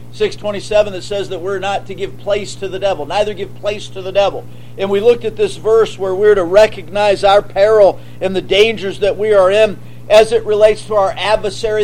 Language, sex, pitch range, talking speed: English, male, 200-305 Hz, 220 wpm